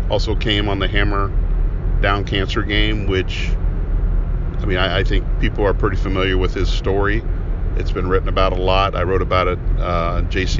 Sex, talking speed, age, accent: male, 190 wpm, 40-59, American